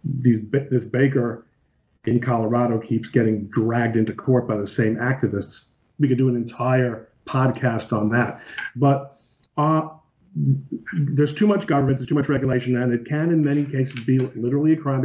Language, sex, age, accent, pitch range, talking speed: English, male, 40-59, American, 115-140 Hz, 170 wpm